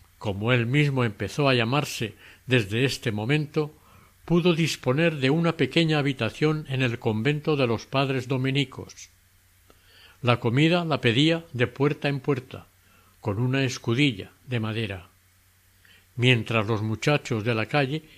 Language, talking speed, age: Spanish, 135 wpm, 60-79